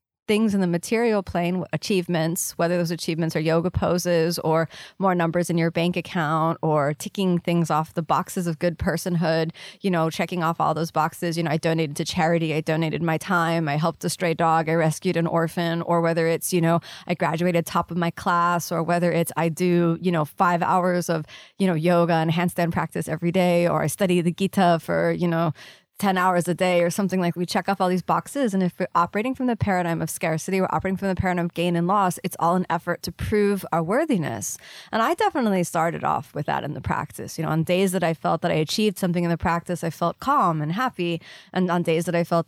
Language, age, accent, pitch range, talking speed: English, 20-39, American, 165-185 Hz, 235 wpm